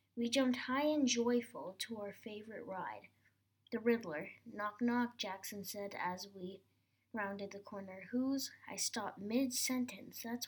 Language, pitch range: English, 190-255 Hz